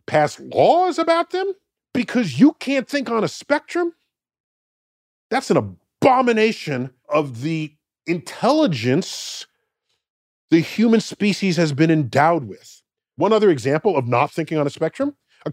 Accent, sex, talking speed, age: American, male, 130 wpm, 40-59